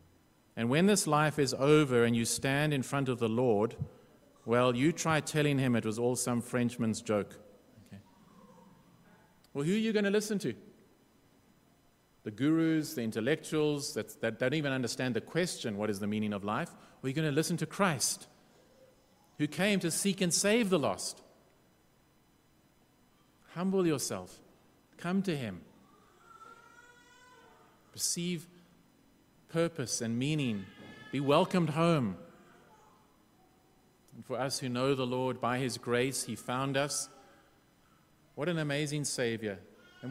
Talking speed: 145 wpm